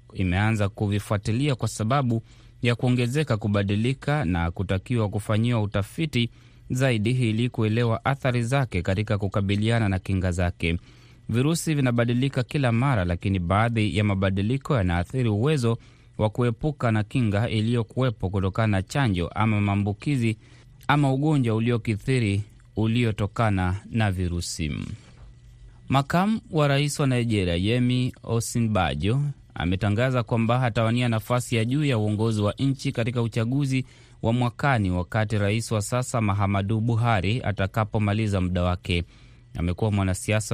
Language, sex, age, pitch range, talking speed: Swahili, male, 30-49, 100-120 Hz, 115 wpm